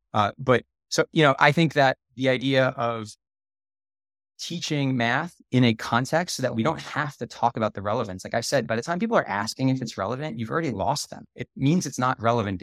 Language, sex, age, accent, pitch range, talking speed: English, male, 20-39, American, 105-135 Hz, 225 wpm